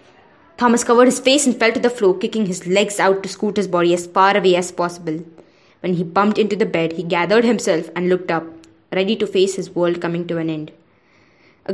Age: 20-39